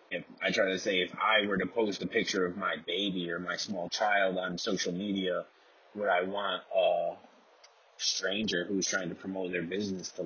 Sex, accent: male, American